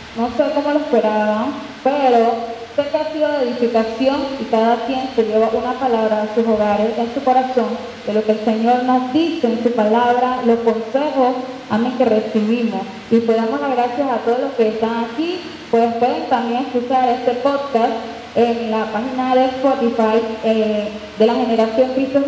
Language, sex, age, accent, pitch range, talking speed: Spanish, female, 10-29, American, 225-285 Hz, 185 wpm